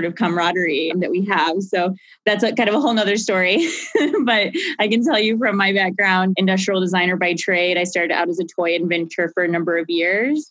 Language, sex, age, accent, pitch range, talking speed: English, female, 20-39, American, 170-190 Hz, 215 wpm